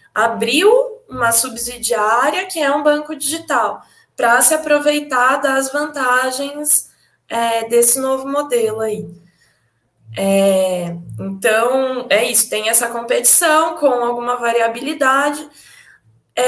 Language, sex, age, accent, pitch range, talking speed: Portuguese, female, 10-29, Brazilian, 215-285 Hz, 95 wpm